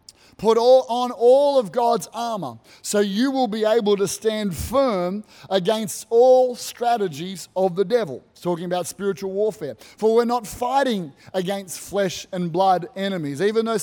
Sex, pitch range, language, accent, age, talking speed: male, 180-215 Hz, English, Australian, 30-49, 160 wpm